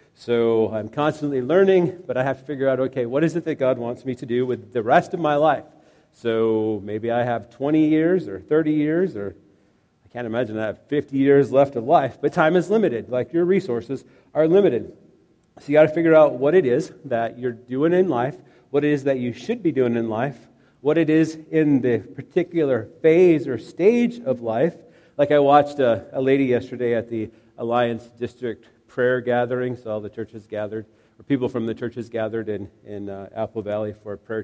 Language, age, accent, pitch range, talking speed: English, 40-59, American, 110-145 Hz, 210 wpm